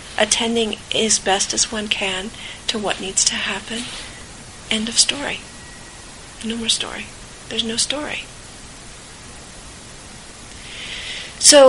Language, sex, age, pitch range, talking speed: English, female, 40-59, 195-225 Hz, 110 wpm